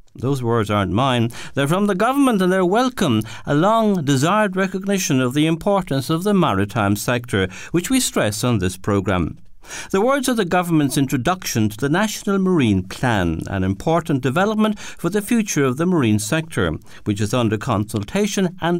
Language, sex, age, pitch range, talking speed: English, male, 60-79, 110-185 Hz, 170 wpm